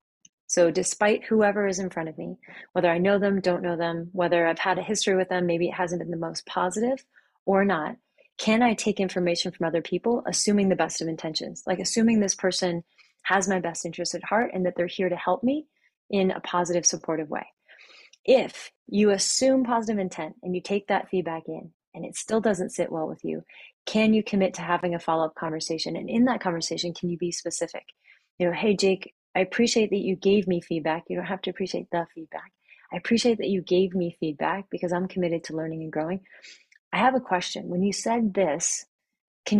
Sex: female